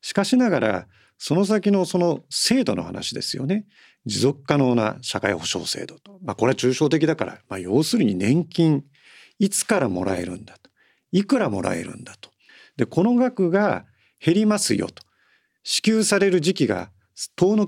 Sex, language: male, Japanese